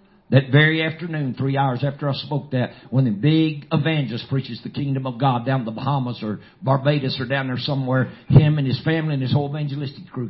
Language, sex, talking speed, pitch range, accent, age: English, male, 210 wpm, 125-155 Hz, American, 50-69